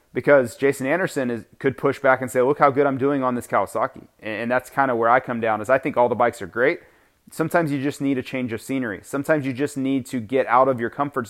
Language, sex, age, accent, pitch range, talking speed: English, male, 30-49, American, 125-150 Hz, 270 wpm